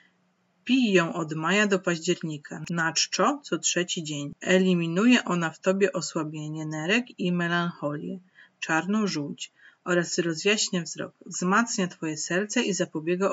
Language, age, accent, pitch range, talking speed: Polish, 30-49, native, 165-200 Hz, 125 wpm